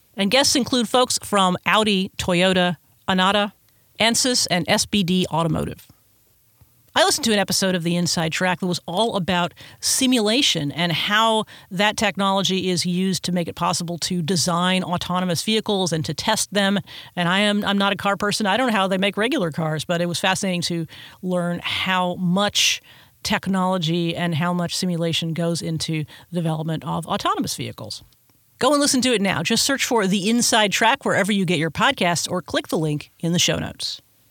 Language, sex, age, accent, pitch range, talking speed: English, female, 40-59, American, 170-210 Hz, 185 wpm